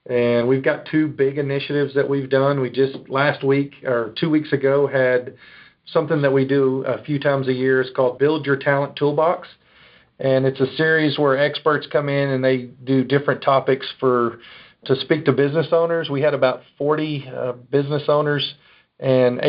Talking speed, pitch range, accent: 185 wpm, 130-145 Hz, American